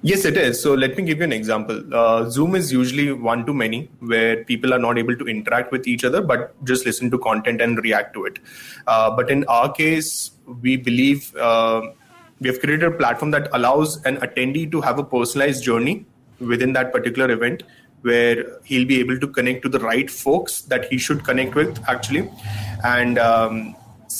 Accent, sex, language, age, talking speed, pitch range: Indian, male, English, 20-39, 200 wpm, 120-135 Hz